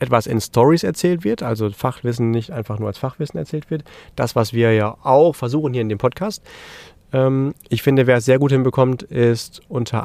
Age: 30-49